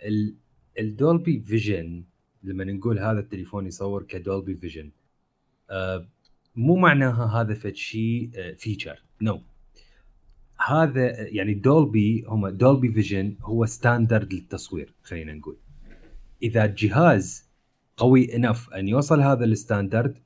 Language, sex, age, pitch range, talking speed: Arabic, male, 30-49, 95-120 Hz, 105 wpm